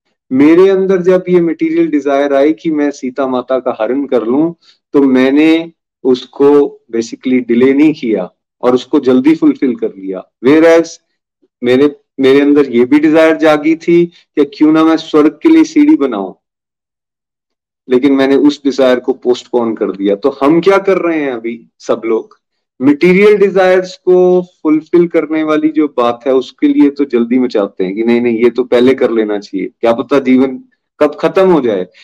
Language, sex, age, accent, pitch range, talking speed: Hindi, male, 30-49, native, 130-175 Hz, 180 wpm